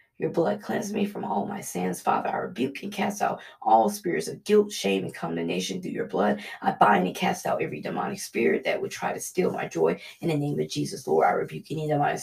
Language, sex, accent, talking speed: English, female, American, 240 wpm